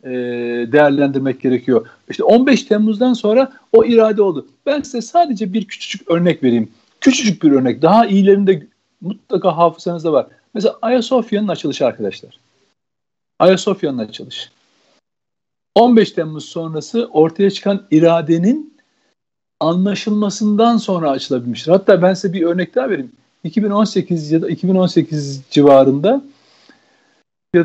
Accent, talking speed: native, 115 wpm